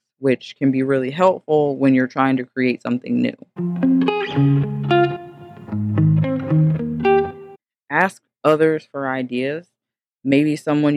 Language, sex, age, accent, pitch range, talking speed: English, female, 20-39, American, 130-150 Hz, 100 wpm